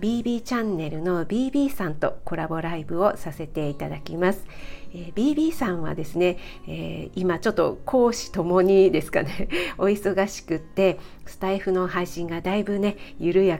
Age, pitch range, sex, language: 40-59, 165-195 Hz, female, Japanese